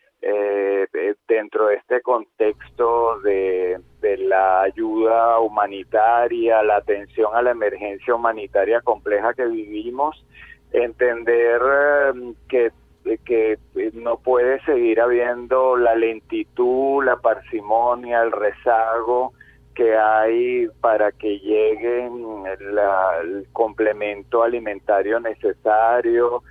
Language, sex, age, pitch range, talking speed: Spanish, male, 40-59, 110-130 Hz, 95 wpm